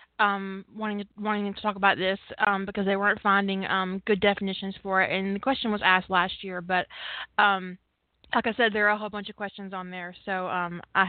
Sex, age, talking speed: female, 20-39, 220 wpm